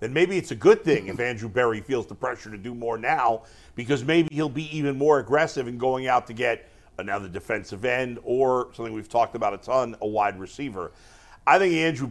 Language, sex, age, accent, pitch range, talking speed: English, male, 50-69, American, 125-170 Hz, 220 wpm